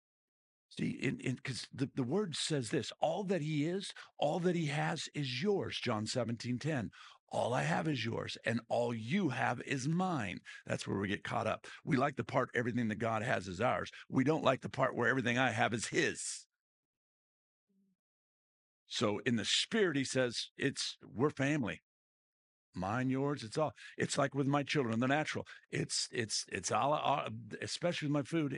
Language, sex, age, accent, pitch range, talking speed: English, male, 50-69, American, 110-145 Hz, 185 wpm